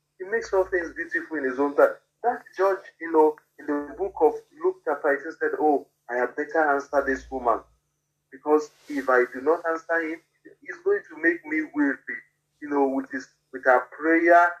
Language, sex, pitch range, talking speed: English, male, 145-185 Hz, 195 wpm